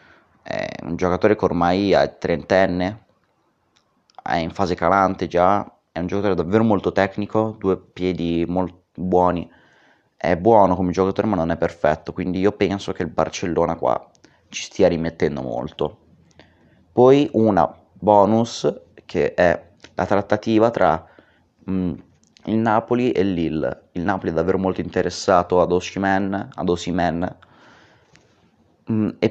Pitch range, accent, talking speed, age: 90-105 Hz, native, 130 wpm, 30-49